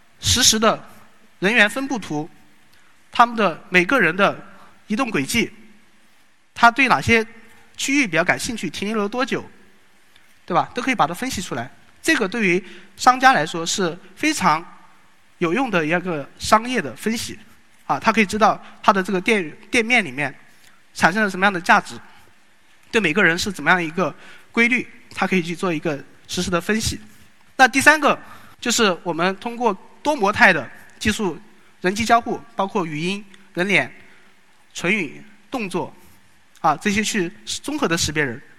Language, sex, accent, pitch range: Chinese, male, native, 175-225 Hz